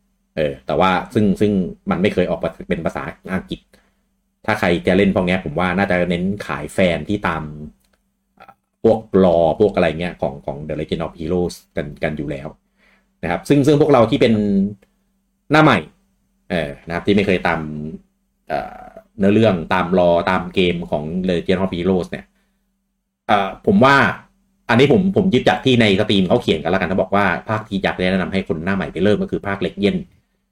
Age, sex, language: 30-49, male, English